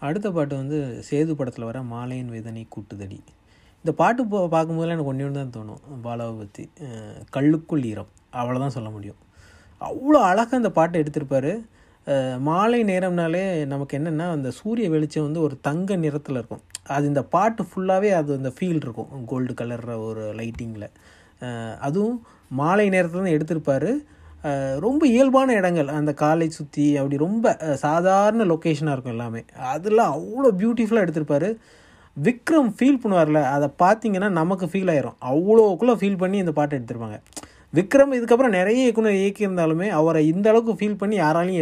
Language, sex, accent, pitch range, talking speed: Tamil, male, native, 130-200 Hz, 145 wpm